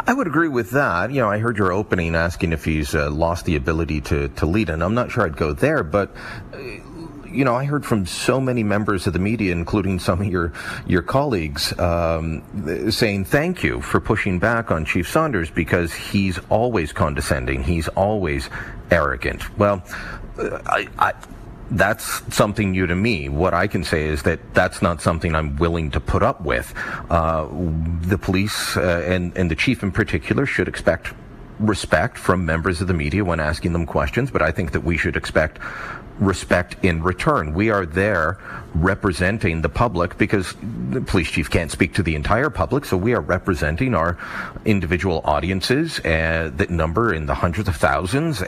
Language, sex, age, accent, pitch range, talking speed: English, male, 40-59, American, 85-105 Hz, 185 wpm